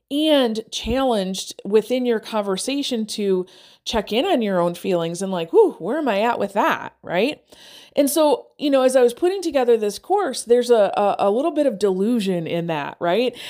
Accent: American